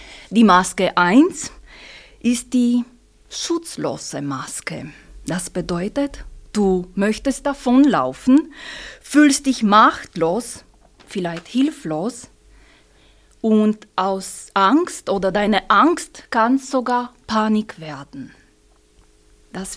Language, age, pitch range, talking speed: German, 30-49, 195-260 Hz, 85 wpm